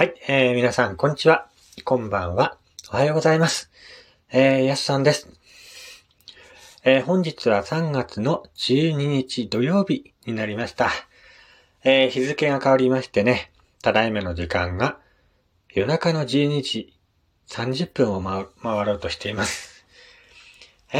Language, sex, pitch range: Japanese, male, 100-145 Hz